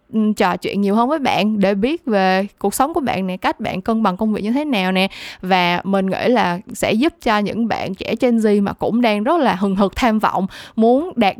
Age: 10-29